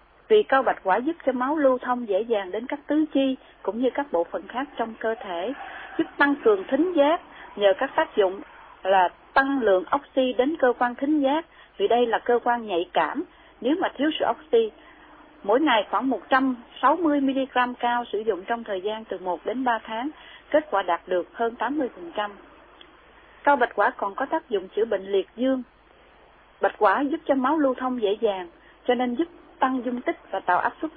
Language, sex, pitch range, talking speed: Vietnamese, female, 215-310 Hz, 205 wpm